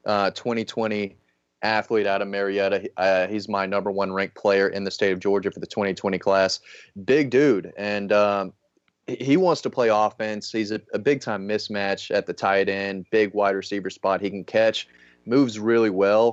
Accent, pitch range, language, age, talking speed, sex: American, 95-110 Hz, English, 30-49, 185 wpm, male